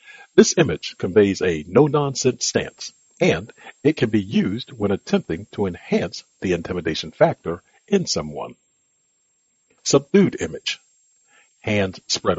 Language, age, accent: English, 50-69, American